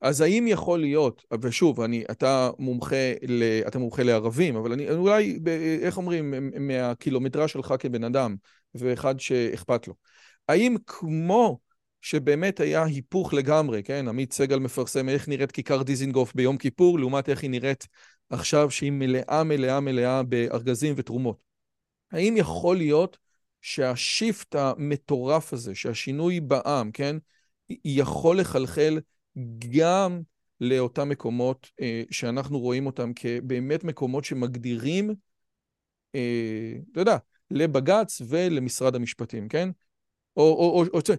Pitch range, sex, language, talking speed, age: 125-165 Hz, male, Hebrew, 120 wpm, 40-59